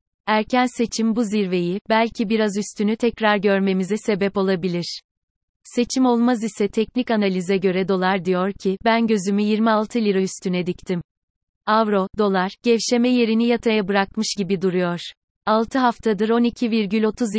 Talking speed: 130 wpm